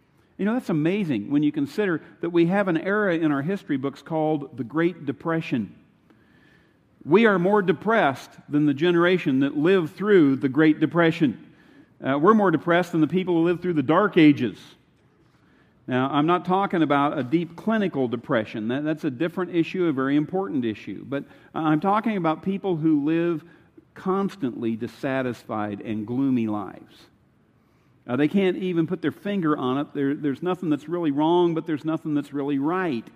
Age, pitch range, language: 50-69, 140-180 Hz, English